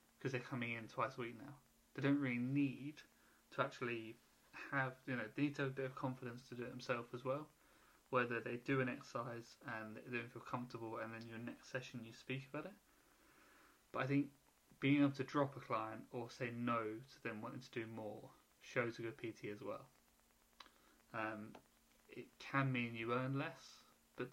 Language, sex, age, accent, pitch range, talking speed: English, male, 20-39, British, 115-135 Hz, 200 wpm